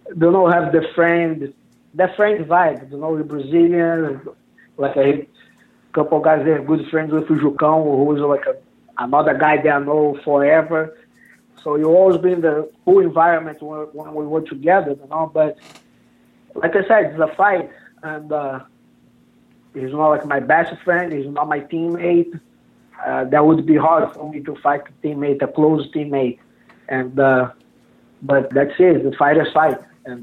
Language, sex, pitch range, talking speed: English, male, 145-165 Hz, 180 wpm